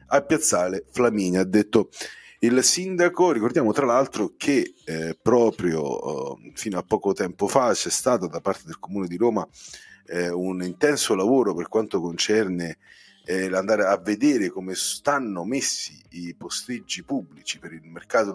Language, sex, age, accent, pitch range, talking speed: Italian, male, 30-49, native, 85-110 Hz, 155 wpm